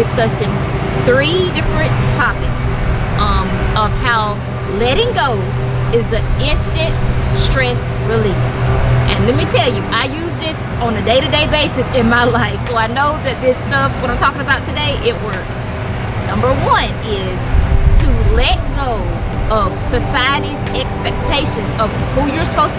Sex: female